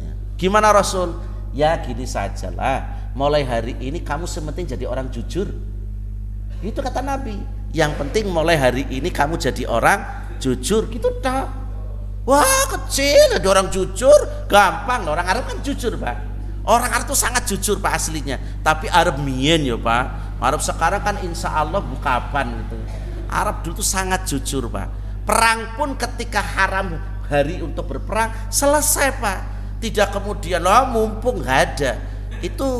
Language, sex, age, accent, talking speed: Indonesian, male, 50-69, native, 145 wpm